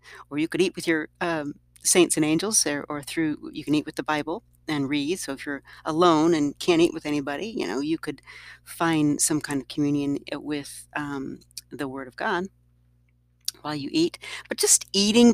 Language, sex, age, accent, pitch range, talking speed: English, female, 40-59, American, 125-200 Hz, 200 wpm